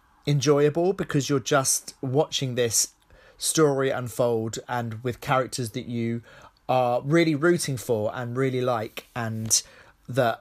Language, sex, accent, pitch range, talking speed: English, male, British, 115-140 Hz, 125 wpm